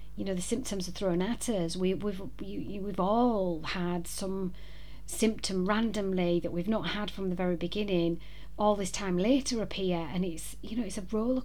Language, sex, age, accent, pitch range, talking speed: English, female, 30-49, British, 170-195 Hz, 185 wpm